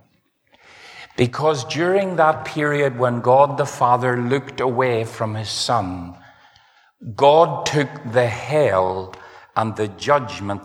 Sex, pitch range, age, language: male, 105-155 Hz, 50-69, English